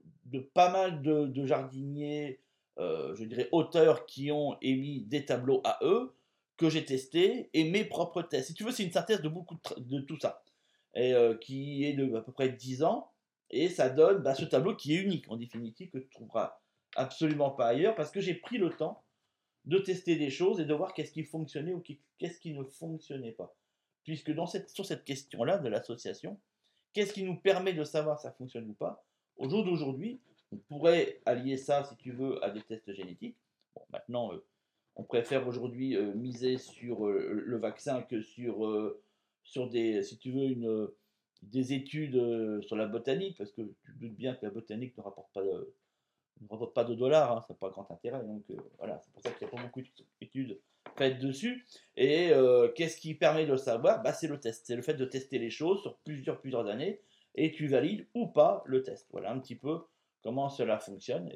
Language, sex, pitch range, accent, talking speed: French, male, 120-165 Hz, French, 215 wpm